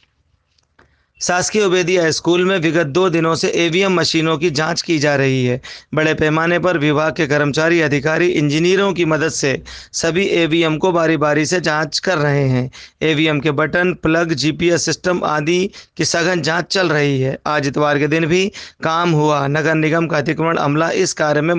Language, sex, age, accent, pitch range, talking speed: Hindi, male, 40-59, native, 150-170 Hz, 180 wpm